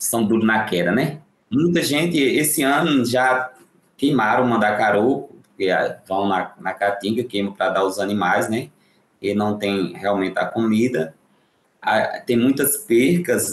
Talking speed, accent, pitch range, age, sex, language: 150 wpm, Brazilian, 105-140 Hz, 20-39, male, Portuguese